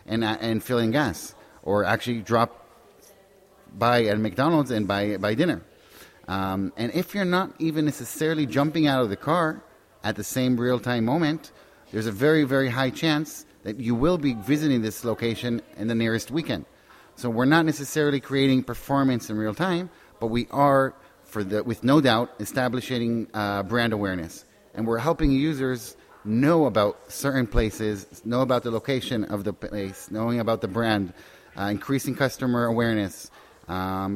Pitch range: 105-135 Hz